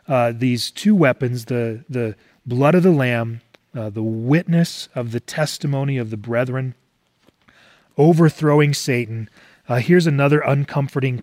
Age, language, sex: 30-49, English, male